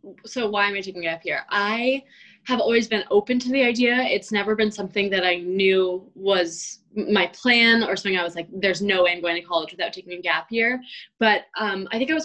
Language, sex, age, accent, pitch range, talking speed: English, female, 10-29, American, 180-225 Hz, 240 wpm